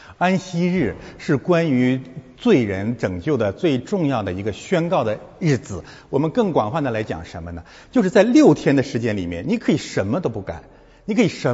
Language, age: Chinese, 60-79